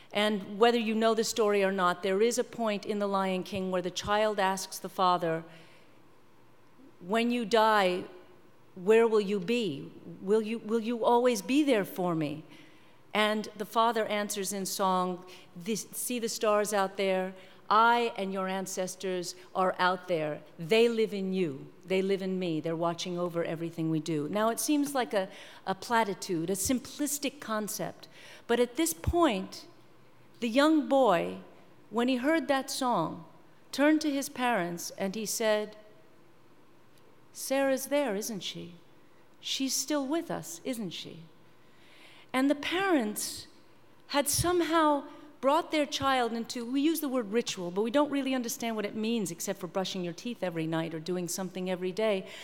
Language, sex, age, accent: English, female, 50-69, American